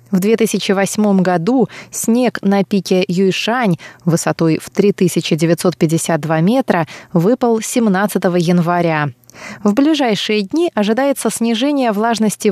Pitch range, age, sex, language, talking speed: 170-235 Hz, 20-39, female, Russian, 95 wpm